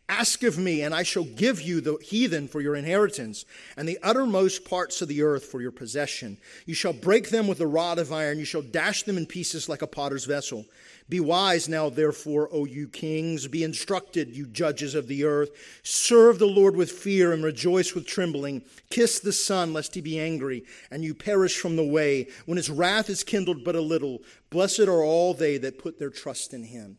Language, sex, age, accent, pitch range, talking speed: English, male, 40-59, American, 150-185 Hz, 215 wpm